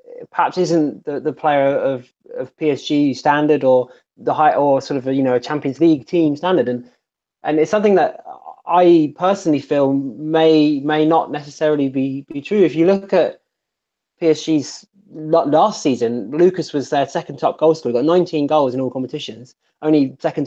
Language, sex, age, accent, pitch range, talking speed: English, male, 20-39, British, 140-170 Hz, 175 wpm